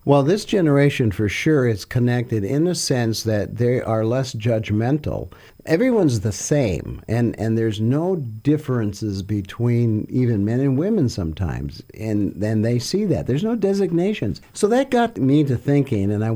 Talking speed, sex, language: 165 wpm, male, English